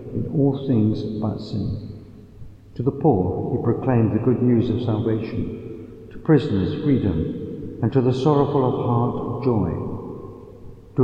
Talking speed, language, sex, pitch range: 140 wpm, English, male, 115-130 Hz